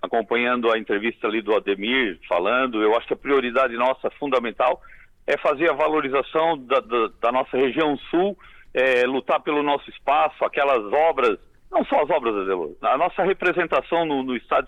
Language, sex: Portuguese, male